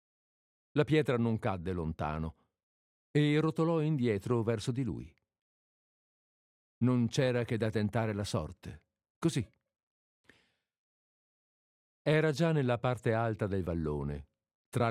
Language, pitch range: Italian, 90-125 Hz